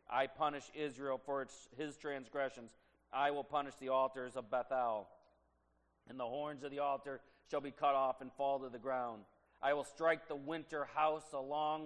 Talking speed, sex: 175 wpm, male